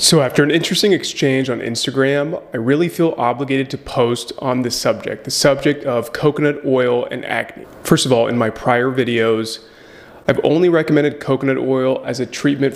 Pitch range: 120-145 Hz